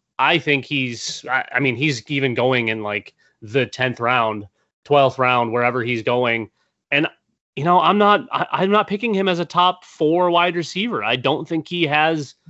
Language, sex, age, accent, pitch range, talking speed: English, male, 30-49, American, 135-170 Hz, 180 wpm